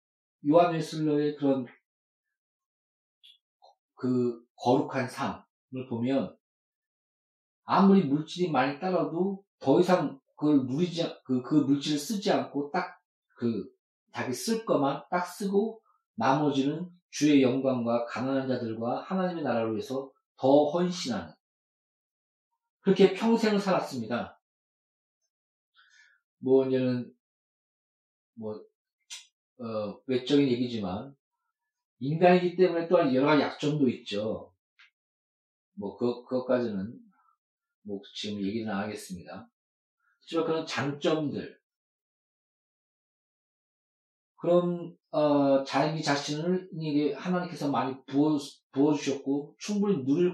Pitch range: 130-185 Hz